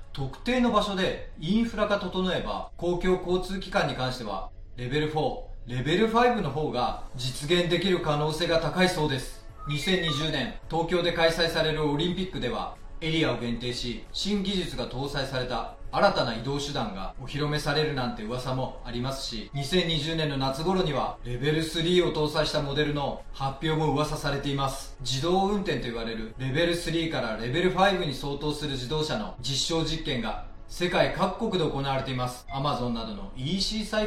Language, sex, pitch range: Japanese, male, 130-175 Hz